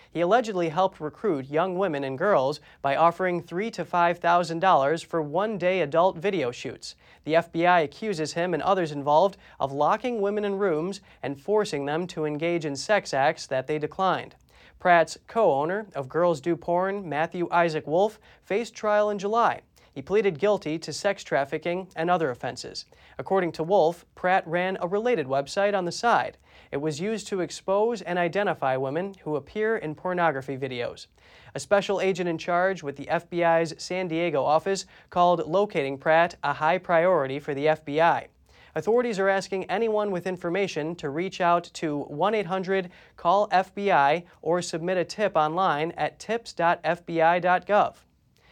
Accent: American